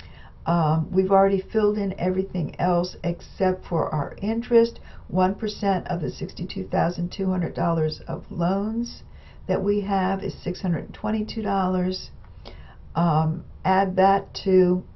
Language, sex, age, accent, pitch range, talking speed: English, female, 60-79, American, 170-205 Hz, 105 wpm